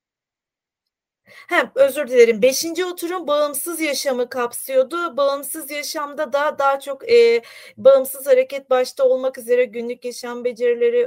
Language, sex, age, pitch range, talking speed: Turkish, female, 40-59, 215-290 Hz, 120 wpm